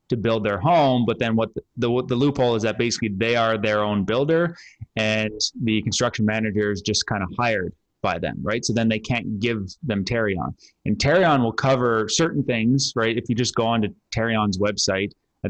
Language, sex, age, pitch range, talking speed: English, male, 20-39, 105-125 Hz, 205 wpm